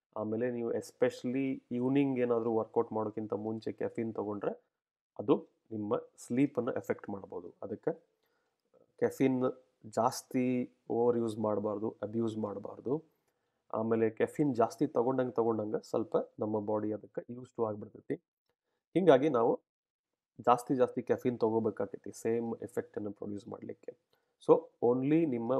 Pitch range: 110-135 Hz